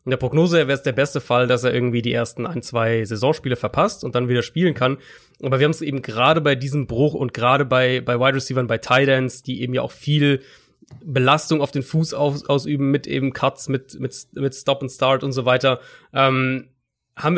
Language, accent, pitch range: German, German, 130-150 Hz